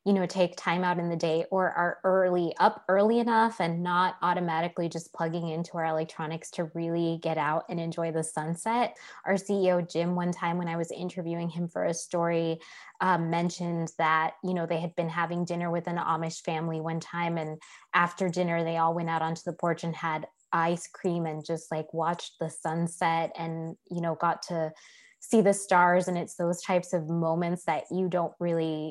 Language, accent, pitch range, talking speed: English, American, 165-185 Hz, 200 wpm